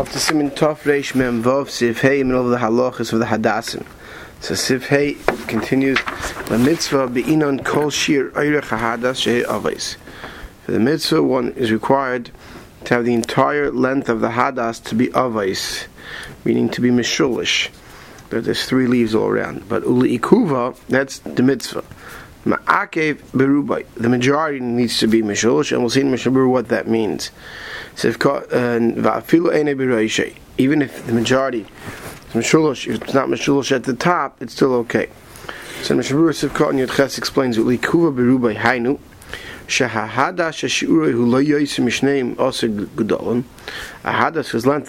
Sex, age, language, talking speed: male, 30-49, English, 140 wpm